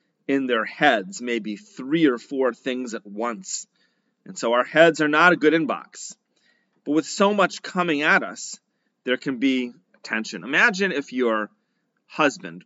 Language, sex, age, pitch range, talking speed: English, male, 30-49, 120-190 Hz, 160 wpm